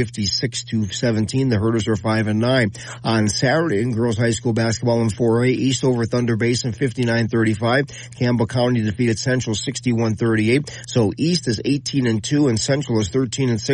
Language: English